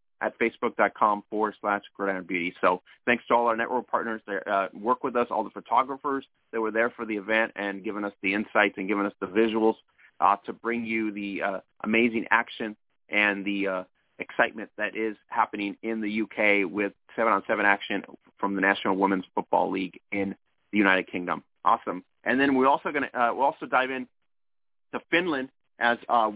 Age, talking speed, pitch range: 30-49, 195 wpm, 105-130 Hz